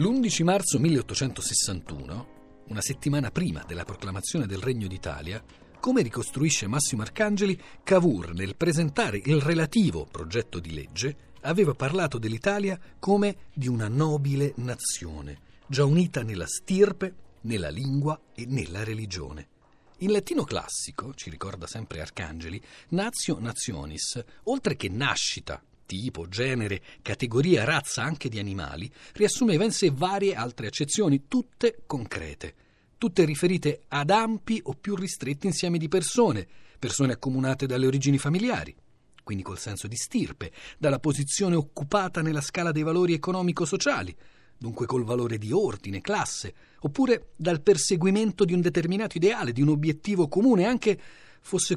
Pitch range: 120-185 Hz